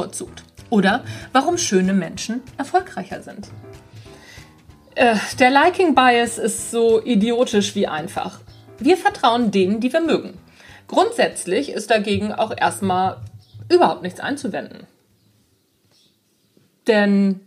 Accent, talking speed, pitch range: German, 100 wpm, 195-260 Hz